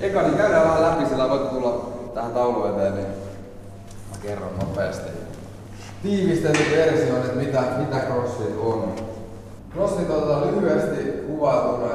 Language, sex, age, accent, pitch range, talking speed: Finnish, male, 20-39, native, 100-115 Hz, 125 wpm